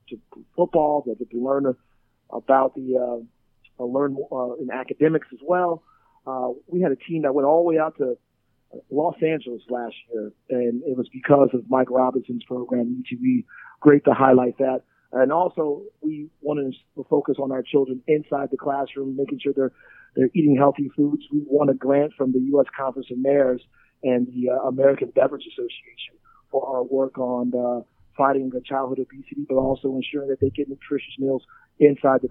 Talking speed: 180 wpm